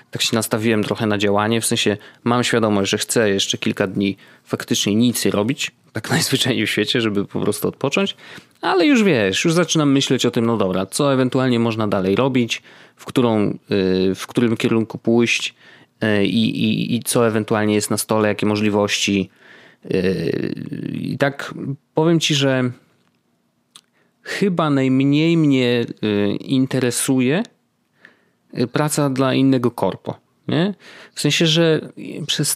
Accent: native